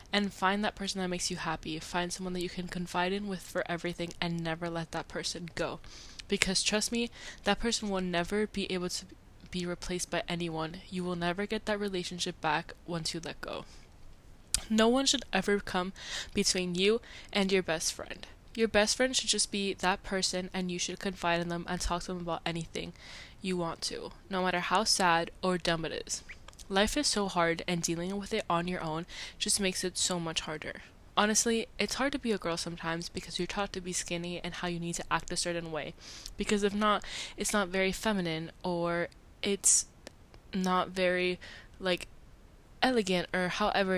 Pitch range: 170-200 Hz